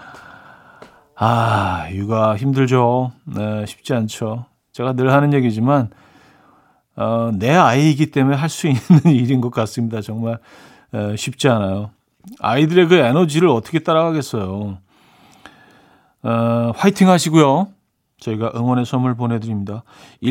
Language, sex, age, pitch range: Korean, male, 40-59, 115-155 Hz